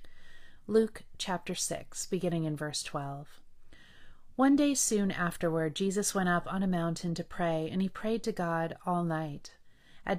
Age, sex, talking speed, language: 30-49, female, 160 wpm, English